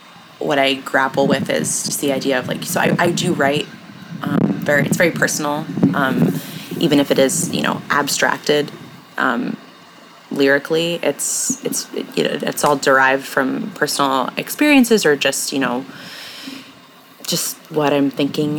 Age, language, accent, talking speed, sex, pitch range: 20-39, English, American, 150 wpm, female, 135-170 Hz